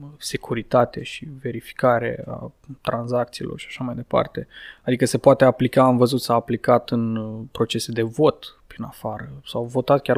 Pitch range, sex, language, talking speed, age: 115-135 Hz, male, Romanian, 155 wpm, 20-39